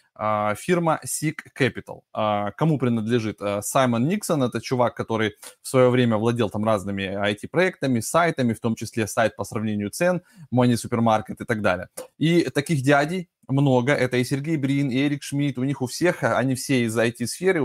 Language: Russian